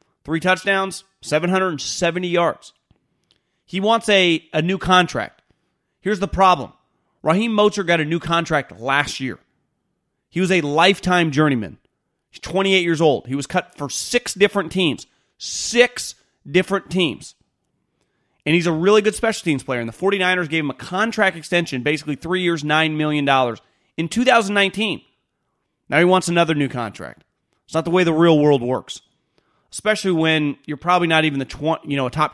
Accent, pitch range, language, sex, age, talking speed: American, 150-185 Hz, English, male, 30-49, 165 wpm